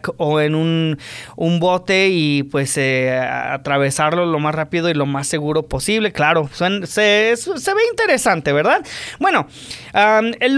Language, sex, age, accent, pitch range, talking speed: English, male, 30-49, Mexican, 170-260 Hz, 140 wpm